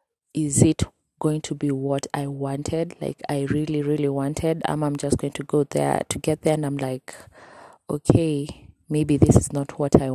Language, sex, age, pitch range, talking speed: English, female, 20-39, 140-160 Hz, 195 wpm